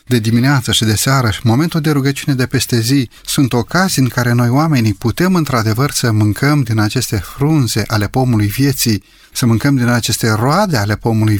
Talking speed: 180 wpm